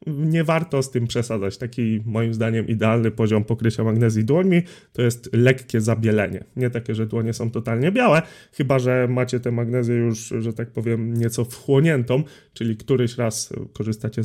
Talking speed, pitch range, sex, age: 165 wpm, 115-140 Hz, male, 30-49